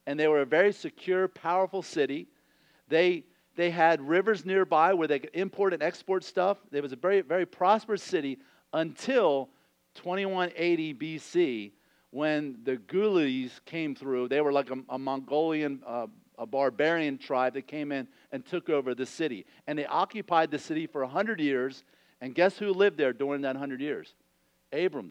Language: English